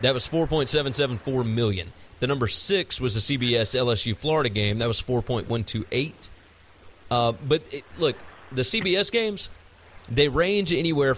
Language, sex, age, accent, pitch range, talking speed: English, male, 30-49, American, 95-140 Hz, 140 wpm